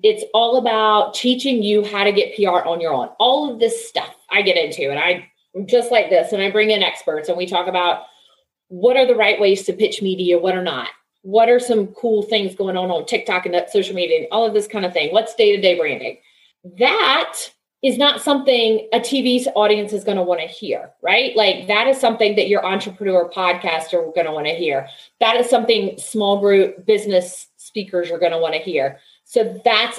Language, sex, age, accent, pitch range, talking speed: English, female, 30-49, American, 185-245 Hz, 220 wpm